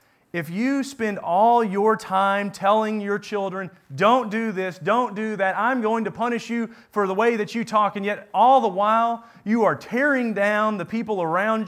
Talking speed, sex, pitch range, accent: 195 wpm, male, 140-215 Hz, American